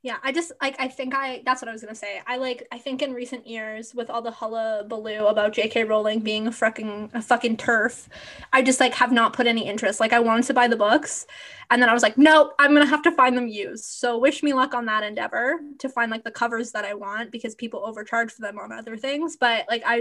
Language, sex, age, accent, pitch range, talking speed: English, female, 20-39, American, 225-260 Hz, 260 wpm